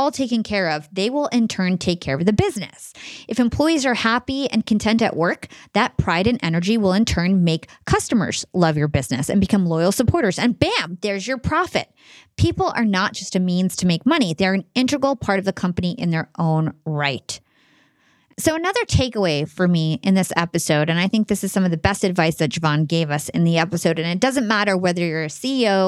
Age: 30-49